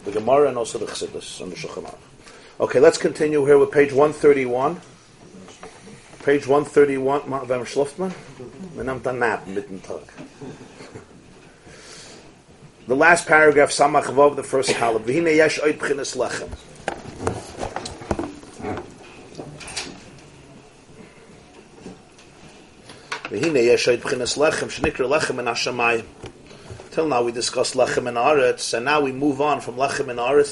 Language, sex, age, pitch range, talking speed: English, male, 40-59, 135-180 Hz, 90 wpm